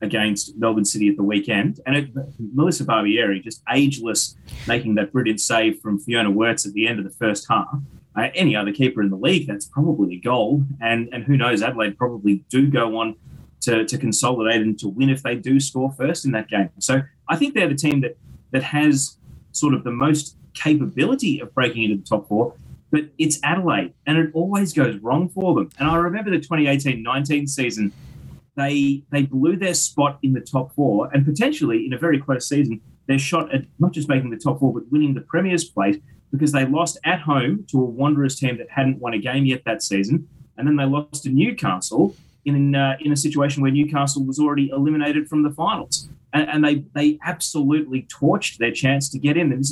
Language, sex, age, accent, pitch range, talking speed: English, male, 20-39, Australian, 115-150 Hz, 210 wpm